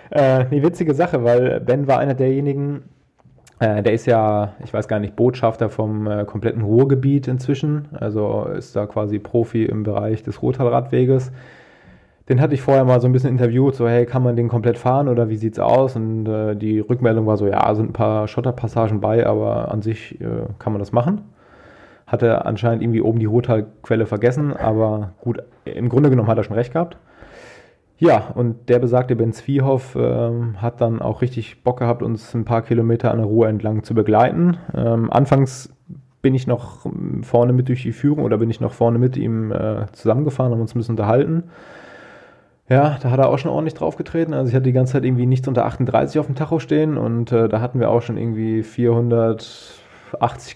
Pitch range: 110-135 Hz